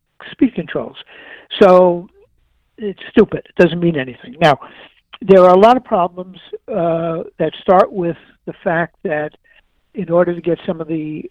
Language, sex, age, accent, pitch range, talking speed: English, male, 60-79, American, 150-195 Hz, 160 wpm